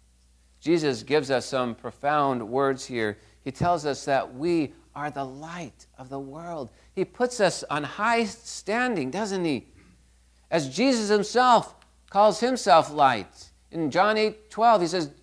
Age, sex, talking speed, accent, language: 50-69, male, 150 wpm, American, English